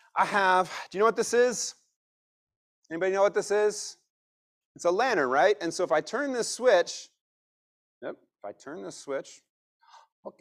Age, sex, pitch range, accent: 30-49, male, 155-220 Hz, American